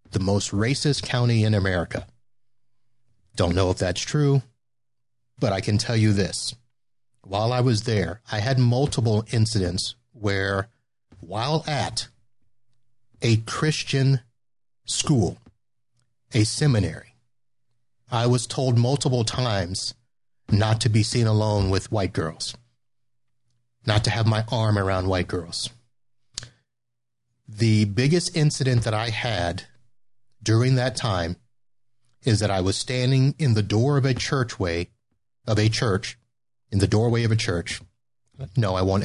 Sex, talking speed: male, 130 wpm